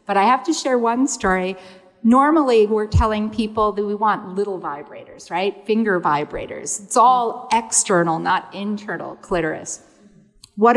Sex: female